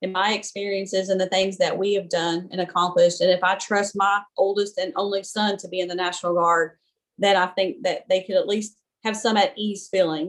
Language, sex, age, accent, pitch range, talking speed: English, female, 30-49, American, 180-205 Hz, 235 wpm